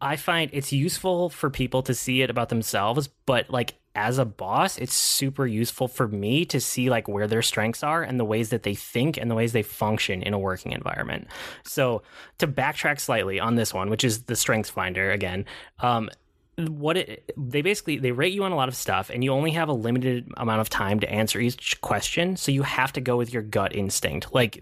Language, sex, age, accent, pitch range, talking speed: English, male, 10-29, American, 115-140 Hz, 225 wpm